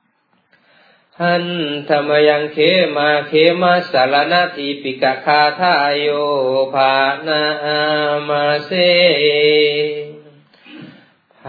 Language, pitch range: Thai, 135-150 Hz